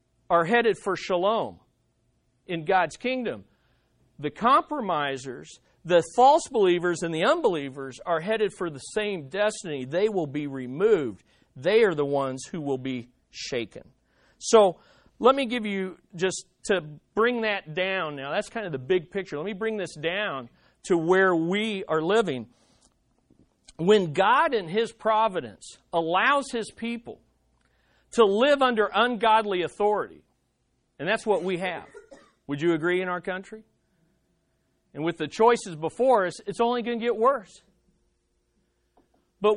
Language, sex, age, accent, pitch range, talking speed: English, male, 40-59, American, 165-230 Hz, 145 wpm